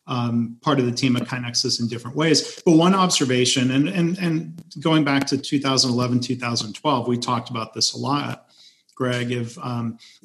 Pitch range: 120-140 Hz